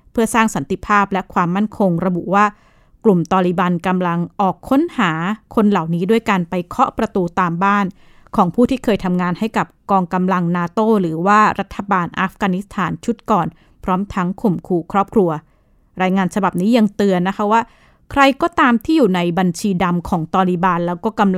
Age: 20-39